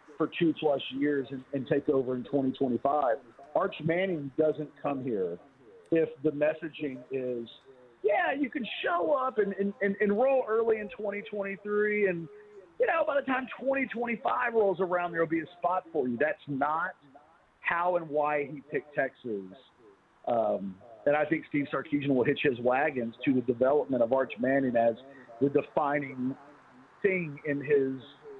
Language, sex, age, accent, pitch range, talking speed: English, male, 40-59, American, 140-205 Hz, 160 wpm